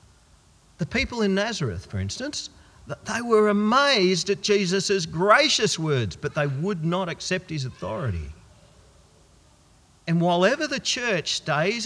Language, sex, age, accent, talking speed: English, male, 50-69, Australian, 130 wpm